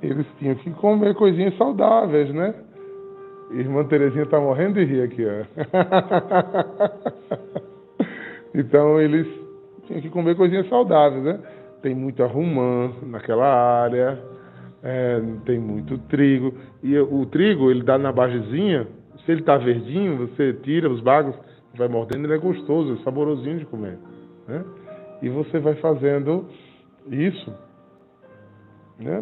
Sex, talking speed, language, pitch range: male, 130 wpm, Portuguese, 130-175 Hz